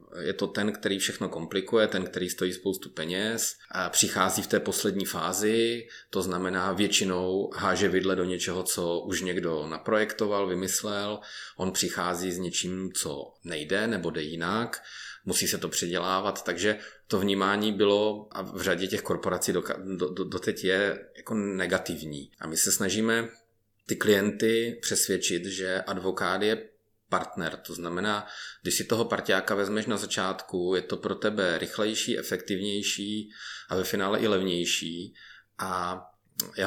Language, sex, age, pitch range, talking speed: Czech, male, 30-49, 90-105 Hz, 150 wpm